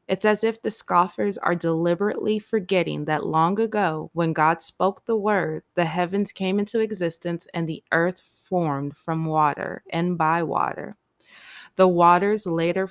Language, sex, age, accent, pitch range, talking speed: English, female, 20-39, American, 150-185 Hz, 155 wpm